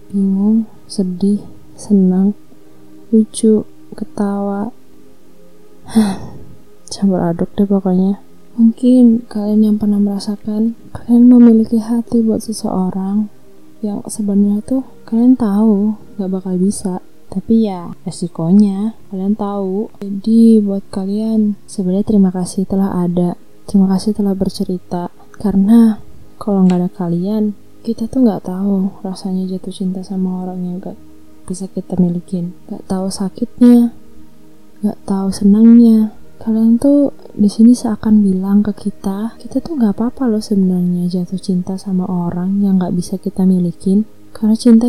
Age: 20-39